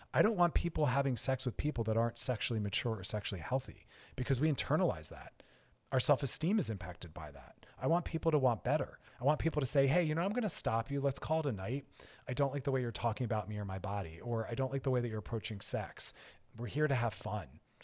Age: 40-59